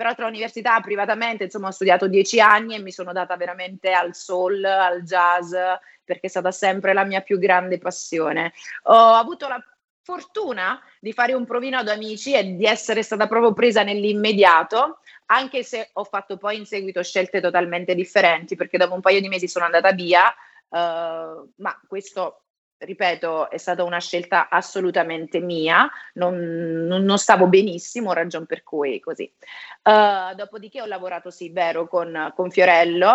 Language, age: Italian, 30-49